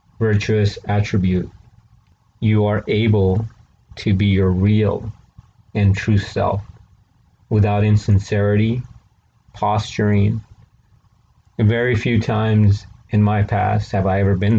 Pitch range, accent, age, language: 100-110 Hz, American, 30-49, English